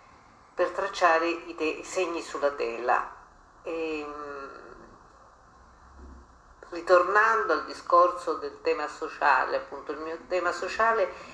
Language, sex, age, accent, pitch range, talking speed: Italian, female, 50-69, native, 155-185 Hz, 95 wpm